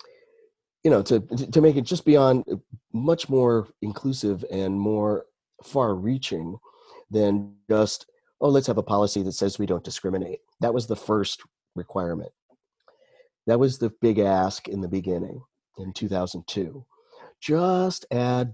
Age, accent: 40-59, American